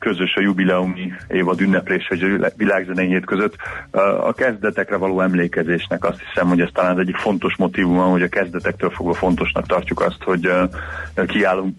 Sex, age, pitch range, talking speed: male, 30-49, 90-100 Hz, 155 wpm